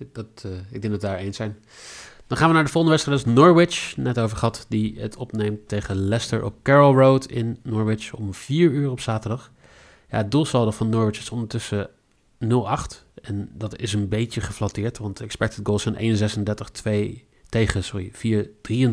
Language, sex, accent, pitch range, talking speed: Dutch, male, Dutch, 105-130 Hz, 185 wpm